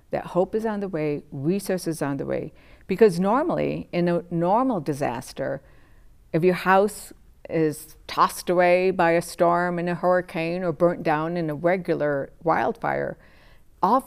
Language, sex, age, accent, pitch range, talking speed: English, female, 60-79, American, 155-185 Hz, 160 wpm